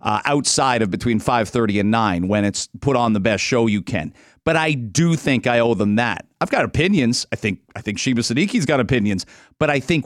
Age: 40-59